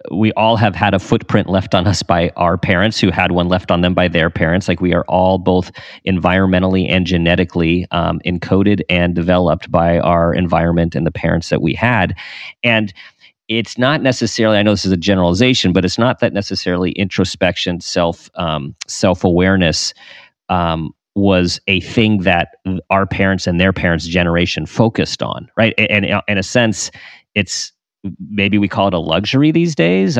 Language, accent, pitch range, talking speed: English, American, 90-110 Hz, 175 wpm